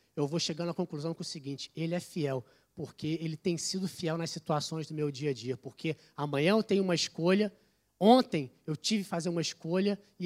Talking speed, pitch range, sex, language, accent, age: 215 wpm, 160-205 Hz, male, Portuguese, Brazilian, 20-39